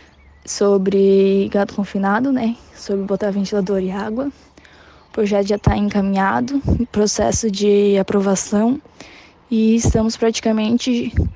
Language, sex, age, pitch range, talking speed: Portuguese, female, 10-29, 195-215 Hz, 105 wpm